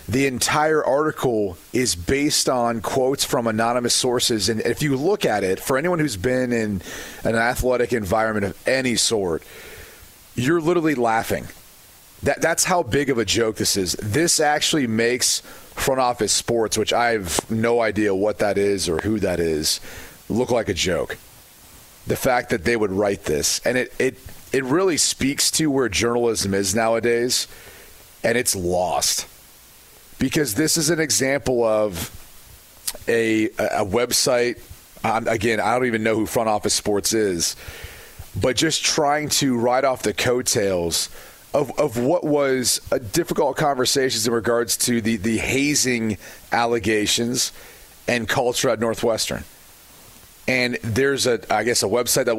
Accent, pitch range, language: American, 105-130 Hz, English